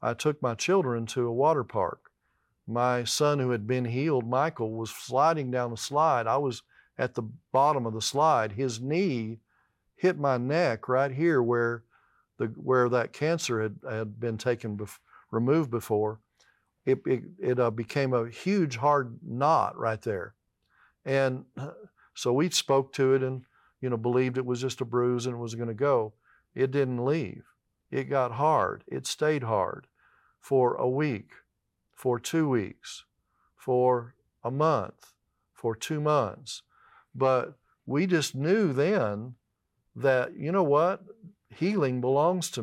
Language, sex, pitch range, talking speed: English, male, 120-145 Hz, 160 wpm